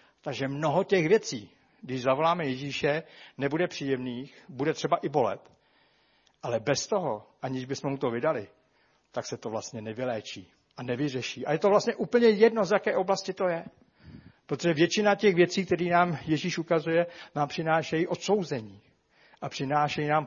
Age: 60-79